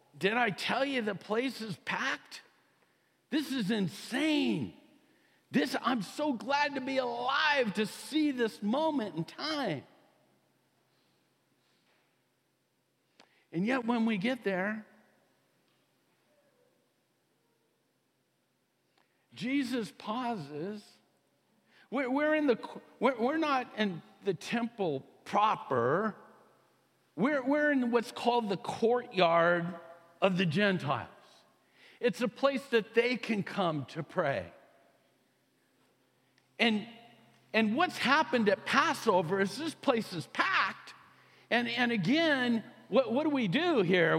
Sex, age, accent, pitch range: male, 50-69, American, 195-265 Hz